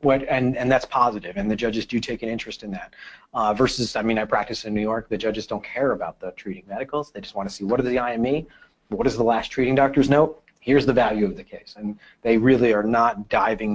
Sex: male